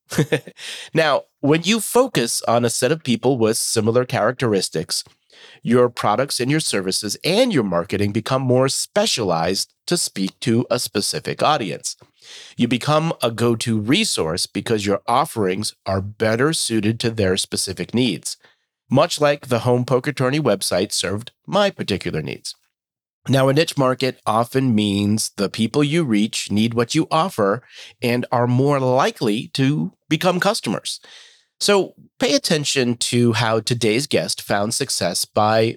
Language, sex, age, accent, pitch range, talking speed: English, male, 40-59, American, 105-145 Hz, 145 wpm